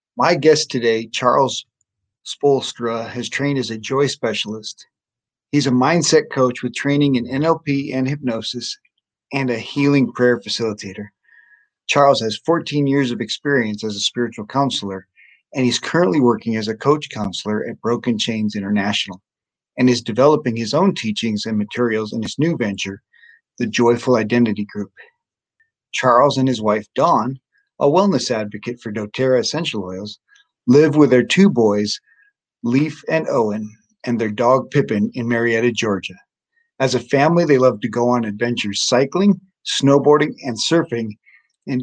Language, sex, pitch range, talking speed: English, male, 110-145 Hz, 150 wpm